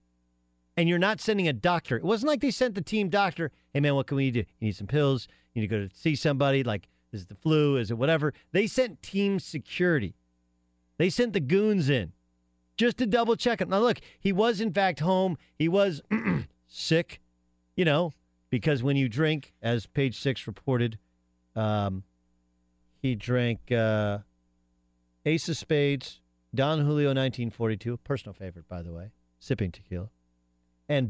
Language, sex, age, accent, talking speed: English, male, 40-59, American, 175 wpm